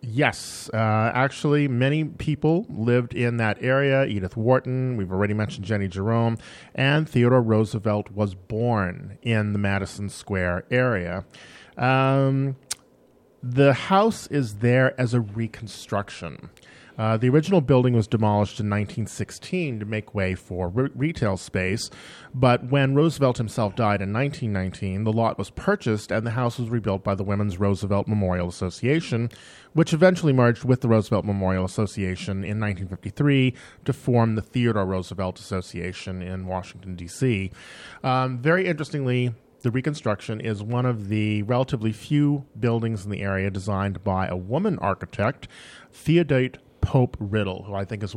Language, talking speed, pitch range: English, 145 wpm, 100-130 Hz